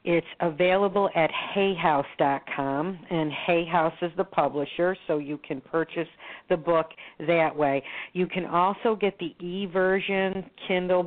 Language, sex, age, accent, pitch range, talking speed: English, female, 50-69, American, 155-180 Hz, 130 wpm